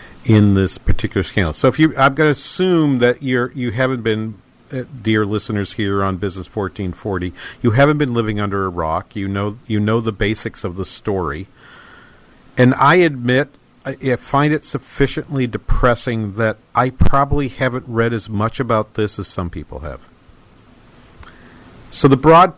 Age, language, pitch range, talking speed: 50-69, English, 105-140 Hz, 170 wpm